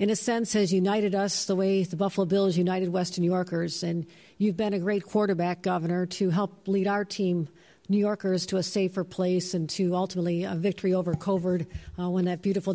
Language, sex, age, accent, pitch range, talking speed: English, female, 50-69, American, 180-205 Hz, 205 wpm